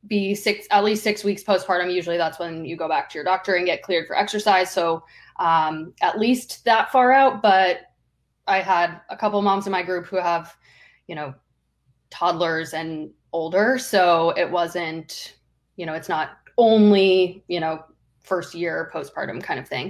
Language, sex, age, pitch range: English, female, 20-39, 170-200 Hz